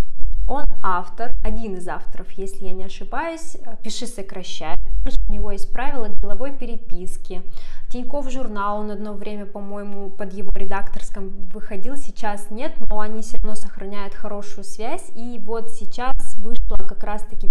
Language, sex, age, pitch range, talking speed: Russian, female, 20-39, 200-255 Hz, 145 wpm